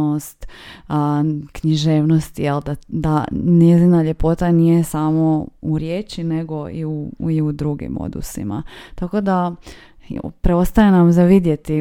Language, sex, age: Croatian, female, 20-39